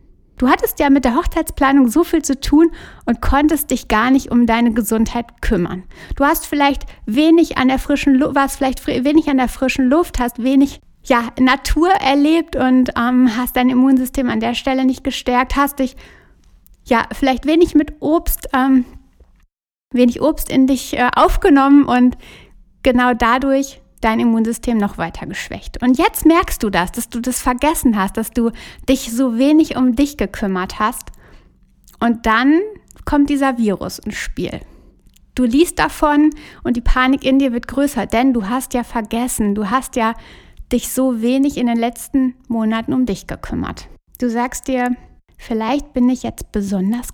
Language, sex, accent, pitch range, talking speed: German, female, German, 235-280 Hz, 170 wpm